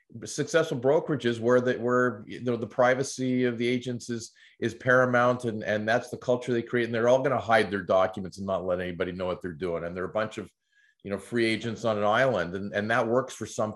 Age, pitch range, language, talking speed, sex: 40-59, 100-125 Hz, English, 245 wpm, male